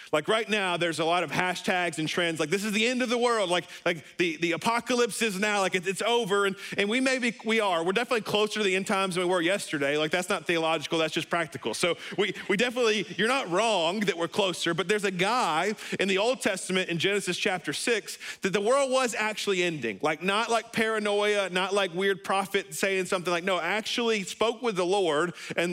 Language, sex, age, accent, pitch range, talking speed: English, male, 40-59, American, 165-210 Hz, 230 wpm